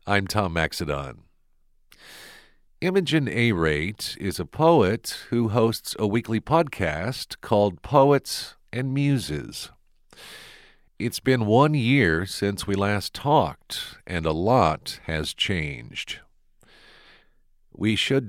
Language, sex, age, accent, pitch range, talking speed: English, male, 50-69, American, 90-125 Hz, 110 wpm